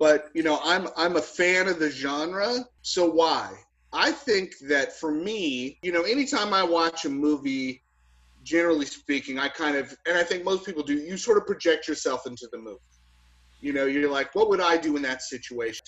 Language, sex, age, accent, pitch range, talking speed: English, male, 30-49, American, 145-215 Hz, 205 wpm